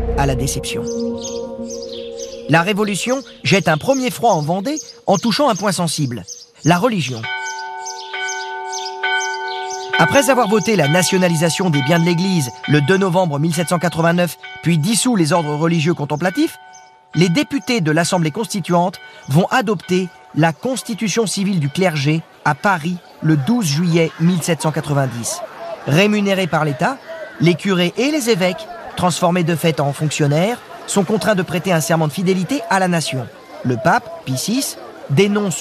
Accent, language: French, French